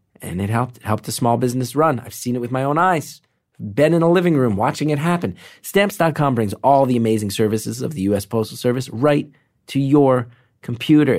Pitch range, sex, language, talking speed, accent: 110-145 Hz, male, English, 205 wpm, American